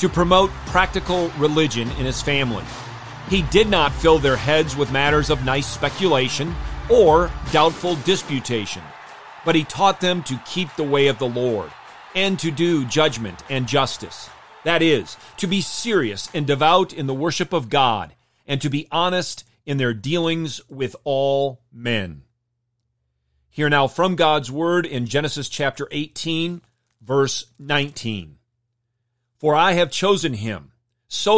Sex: male